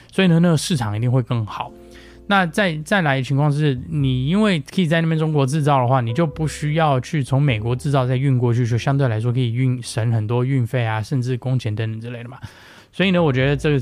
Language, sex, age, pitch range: Chinese, male, 20-39, 115-150 Hz